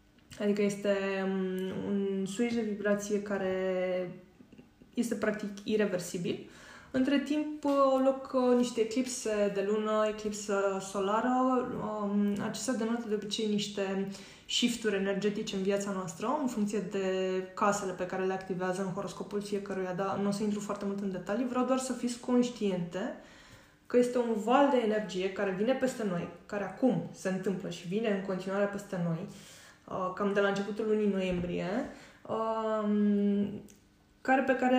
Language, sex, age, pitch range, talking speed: Romanian, female, 20-39, 195-240 Hz, 140 wpm